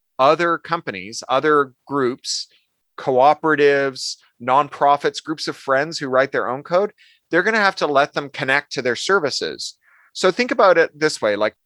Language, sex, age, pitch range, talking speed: English, male, 30-49, 135-185 Hz, 165 wpm